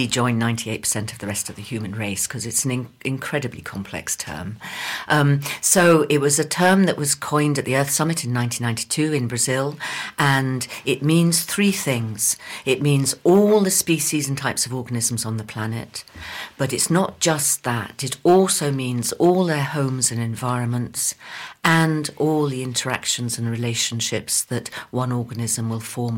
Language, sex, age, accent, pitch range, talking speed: English, female, 50-69, British, 120-150 Hz, 165 wpm